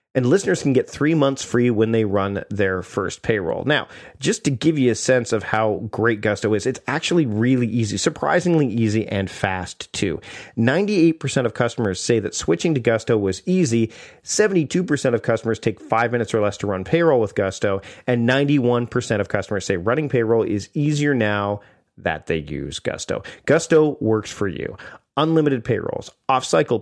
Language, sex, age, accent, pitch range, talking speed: English, male, 40-59, American, 105-135 Hz, 175 wpm